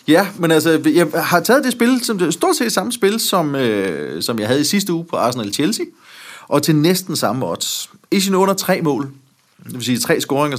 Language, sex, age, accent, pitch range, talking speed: Danish, male, 30-49, native, 120-170 Hz, 215 wpm